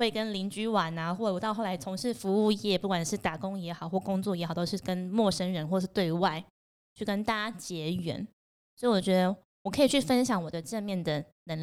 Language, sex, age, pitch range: Chinese, female, 20-39, 170-215 Hz